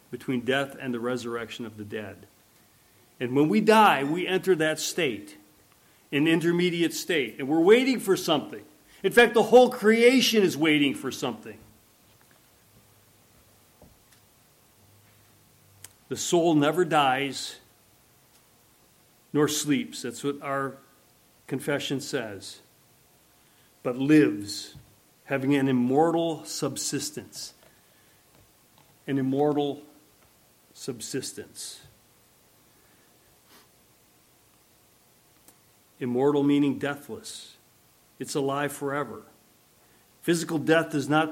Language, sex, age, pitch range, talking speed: English, male, 40-59, 105-165 Hz, 90 wpm